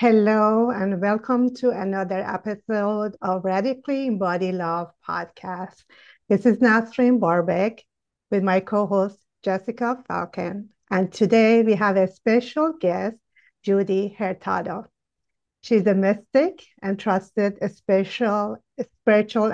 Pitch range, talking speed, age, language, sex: 190-235 Hz, 110 wpm, 50-69, English, female